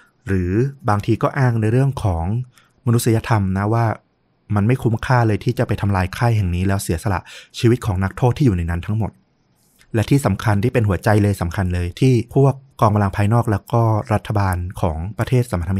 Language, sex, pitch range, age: Thai, male, 95-120 Hz, 20-39